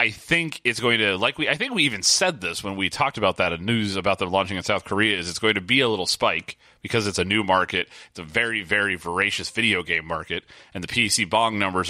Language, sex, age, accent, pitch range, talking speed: English, male, 30-49, American, 85-110 Hz, 260 wpm